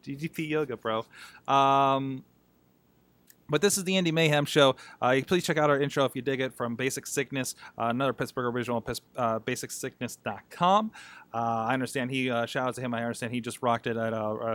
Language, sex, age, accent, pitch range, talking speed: English, male, 30-49, American, 120-175 Hz, 210 wpm